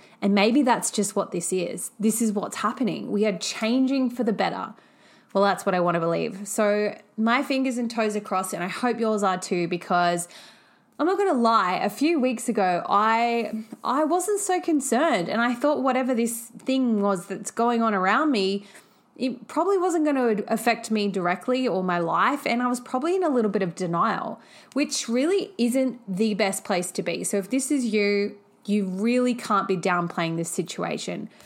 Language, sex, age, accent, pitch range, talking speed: English, female, 20-39, Australian, 185-245 Hz, 200 wpm